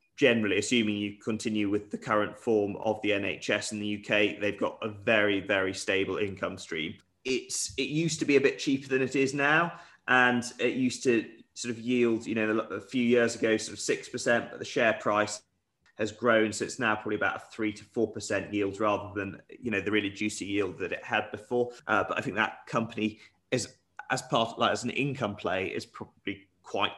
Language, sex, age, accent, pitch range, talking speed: English, male, 20-39, British, 105-120 Hz, 215 wpm